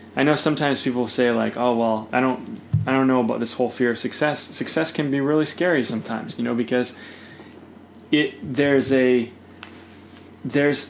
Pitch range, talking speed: 125-165 Hz, 175 wpm